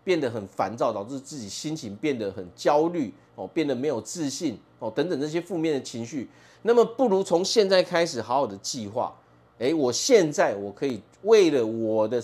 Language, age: Chinese, 30-49